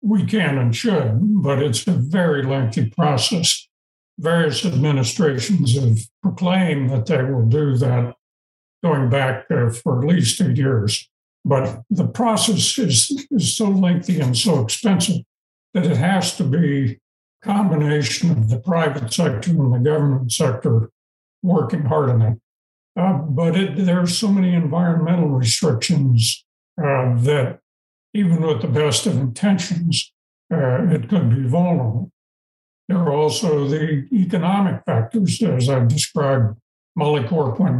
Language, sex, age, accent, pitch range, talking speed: English, male, 60-79, American, 125-175 Hz, 140 wpm